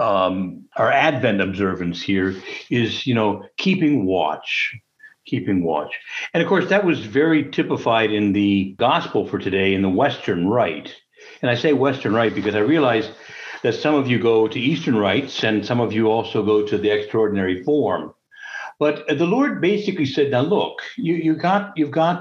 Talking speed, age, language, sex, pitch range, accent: 180 wpm, 60-79, English, male, 110-165 Hz, American